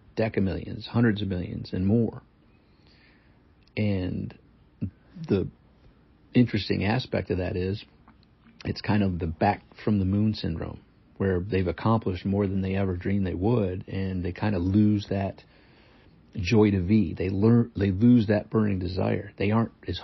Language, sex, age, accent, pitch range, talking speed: English, male, 50-69, American, 95-110 Hz, 145 wpm